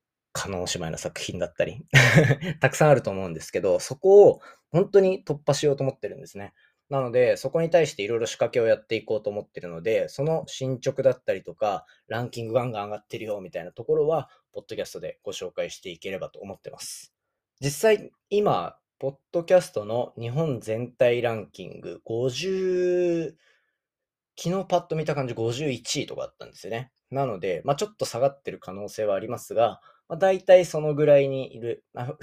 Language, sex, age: Japanese, male, 20-39